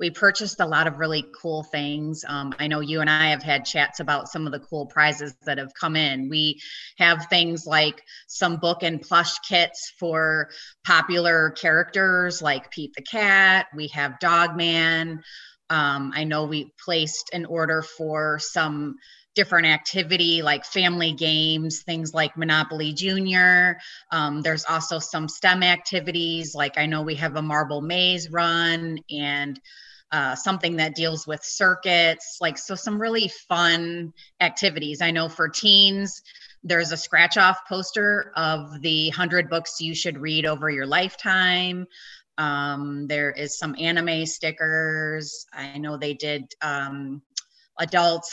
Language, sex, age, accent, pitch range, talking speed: English, female, 30-49, American, 150-170 Hz, 155 wpm